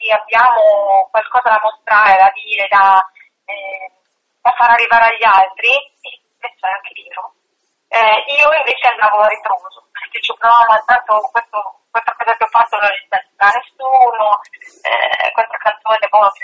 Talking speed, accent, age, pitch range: 155 wpm, native, 30-49, 210-255 Hz